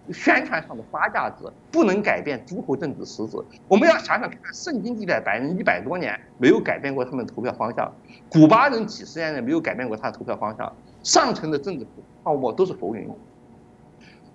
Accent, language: native, Chinese